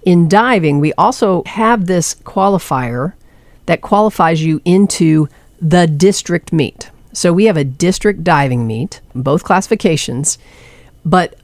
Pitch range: 140-185 Hz